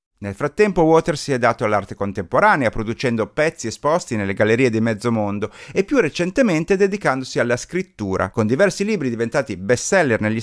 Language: Italian